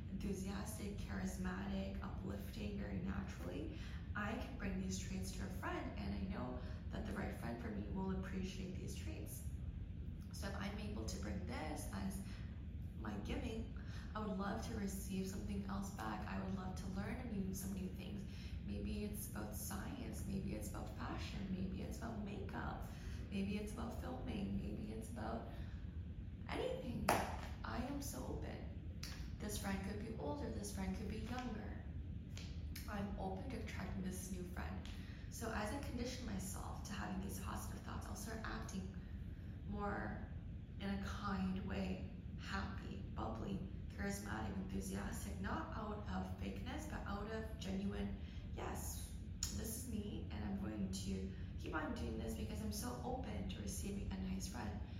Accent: American